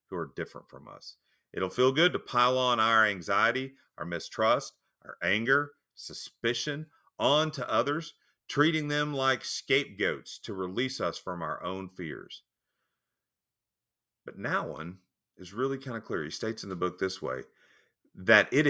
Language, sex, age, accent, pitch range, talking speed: English, male, 40-59, American, 95-130 Hz, 155 wpm